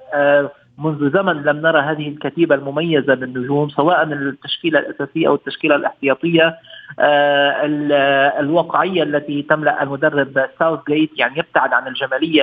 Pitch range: 145-175 Hz